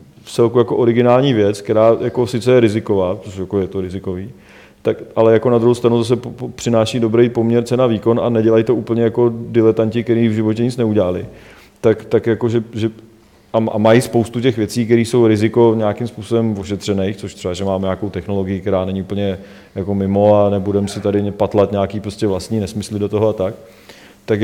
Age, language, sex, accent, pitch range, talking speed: 30-49, Czech, male, native, 105-115 Hz, 195 wpm